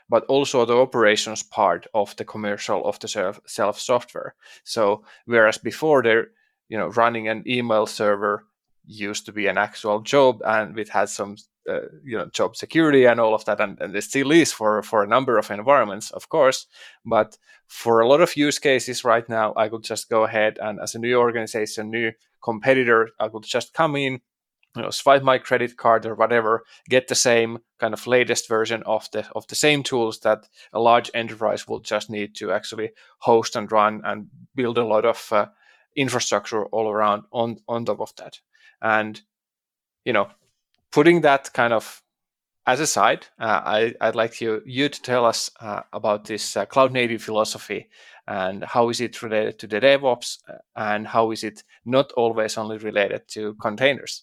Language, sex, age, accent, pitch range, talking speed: English, male, 20-39, Finnish, 110-125 Hz, 190 wpm